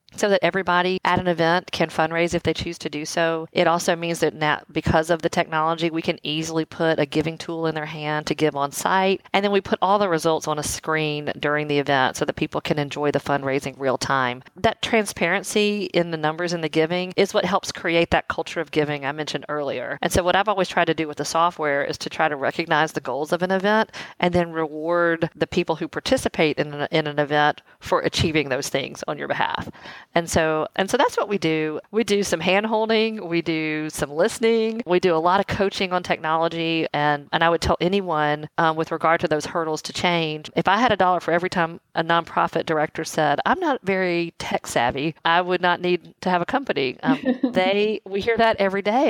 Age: 40-59